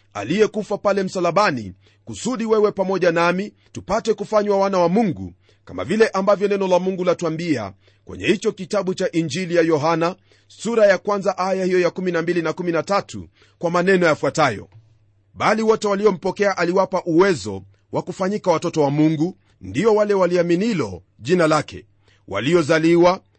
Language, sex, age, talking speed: Swahili, male, 40-59, 145 wpm